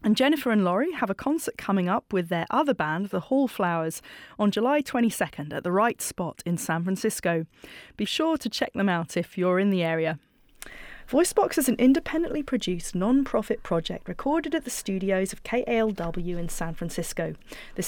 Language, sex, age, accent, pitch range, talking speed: English, female, 30-49, British, 175-235 Hz, 180 wpm